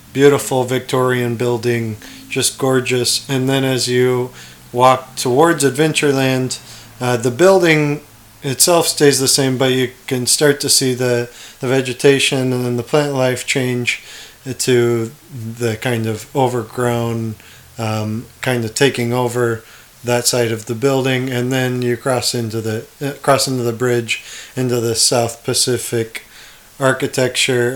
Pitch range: 115-135 Hz